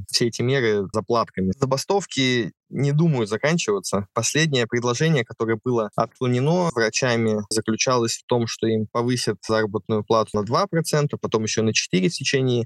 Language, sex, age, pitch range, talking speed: Russian, male, 20-39, 110-130 Hz, 140 wpm